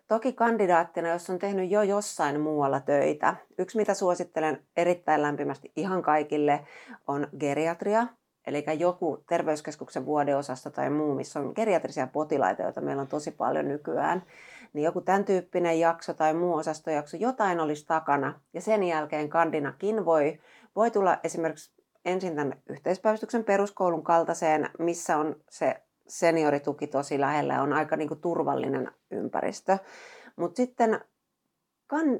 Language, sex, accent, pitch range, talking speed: Finnish, female, native, 150-195 Hz, 135 wpm